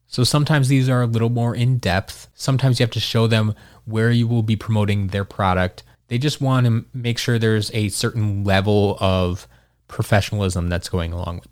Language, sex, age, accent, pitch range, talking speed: English, male, 20-39, American, 105-125 Hz, 200 wpm